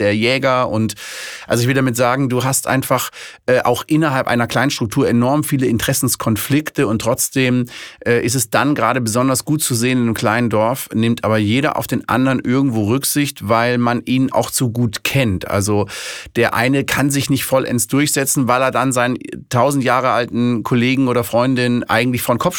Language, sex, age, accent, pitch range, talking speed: German, male, 30-49, German, 115-135 Hz, 190 wpm